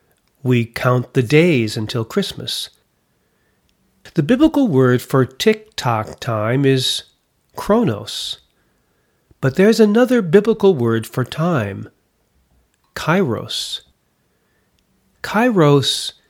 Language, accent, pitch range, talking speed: English, American, 120-165 Hz, 85 wpm